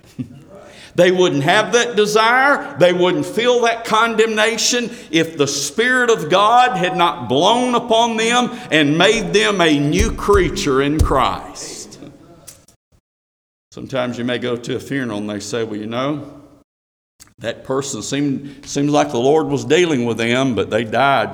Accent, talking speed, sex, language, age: American, 155 wpm, male, English, 50-69